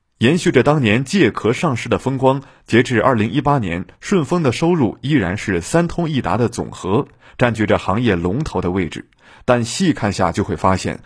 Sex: male